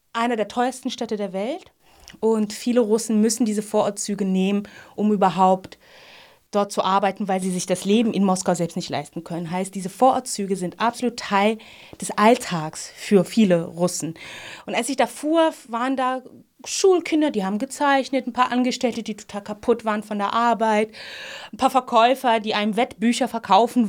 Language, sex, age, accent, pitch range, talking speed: German, female, 20-39, German, 205-255 Hz, 170 wpm